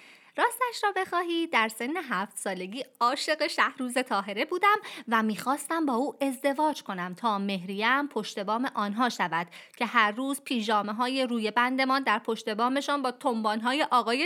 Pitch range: 200-275 Hz